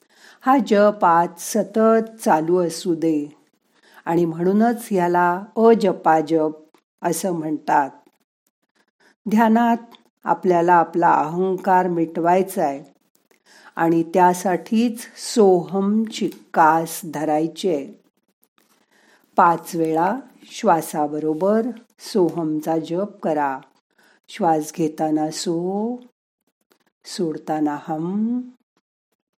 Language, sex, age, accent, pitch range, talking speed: Marathi, female, 50-69, native, 165-220 Hz, 70 wpm